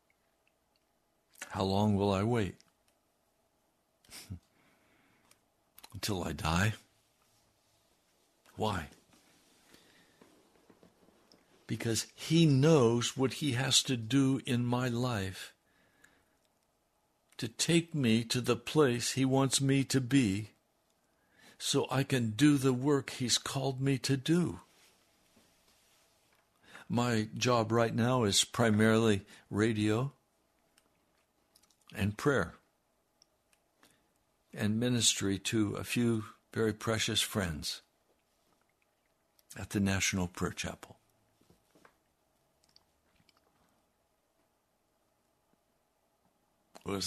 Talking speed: 85 wpm